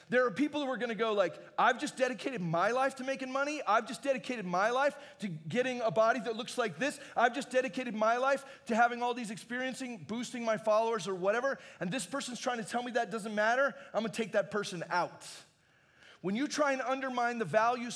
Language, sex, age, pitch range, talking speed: English, male, 30-49, 200-260 Hz, 230 wpm